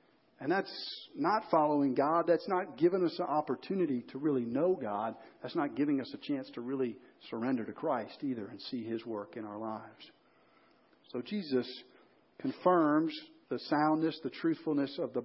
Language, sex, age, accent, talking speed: English, male, 50-69, American, 170 wpm